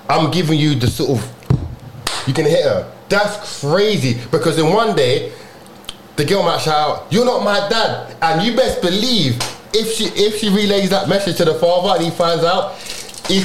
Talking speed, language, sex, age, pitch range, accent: 195 wpm, English, male, 20-39, 145-200 Hz, British